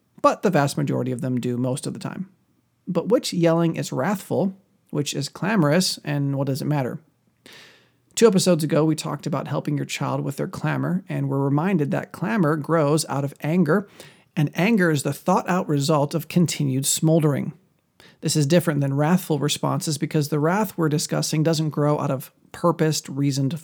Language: English